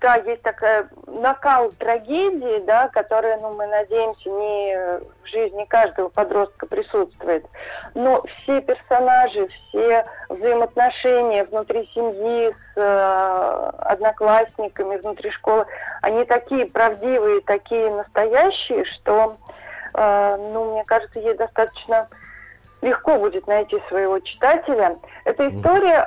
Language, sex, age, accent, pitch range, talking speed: Russian, female, 30-49, native, 210-290 Hz, 110 wpm